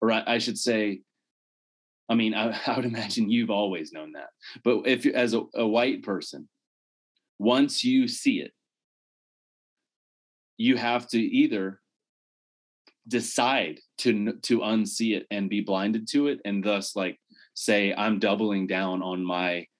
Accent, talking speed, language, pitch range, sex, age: American, 150 wpm, English, 95-120 Hz, male, 20-39